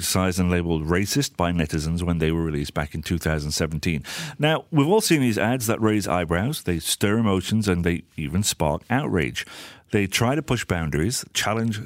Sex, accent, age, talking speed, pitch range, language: male, British, 40-59, 180 wpm, 85-125 Hz, English